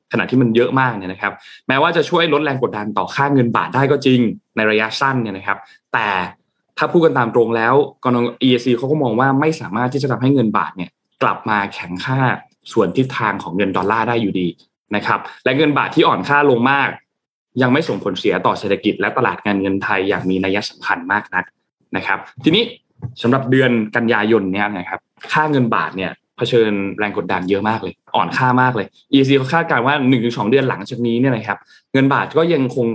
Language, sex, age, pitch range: Thai, male, 20-39, 105-135 Hz